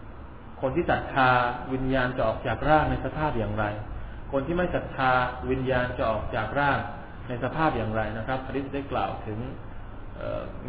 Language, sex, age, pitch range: Thai, male, 20-39, 110-145 Hz